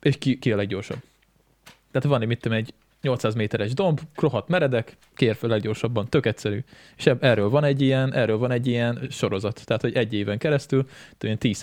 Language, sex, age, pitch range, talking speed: Hungarian, male, 20-39, 110-145 Hz, 170 wpm